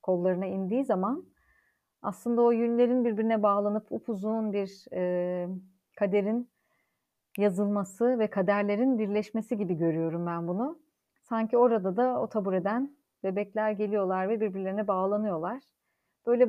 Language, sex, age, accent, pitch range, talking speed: Turkish, female, 40-59, native, 190-235 Hz, 115 wpm